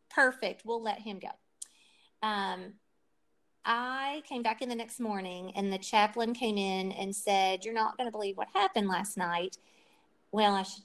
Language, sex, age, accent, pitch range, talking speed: English, female, 40-59, American, 200-250 Hz, 175 wpm